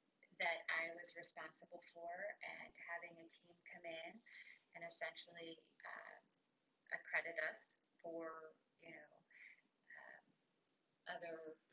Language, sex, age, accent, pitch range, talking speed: English, female, 30-49, American, 160-175 Hz, 90 wpm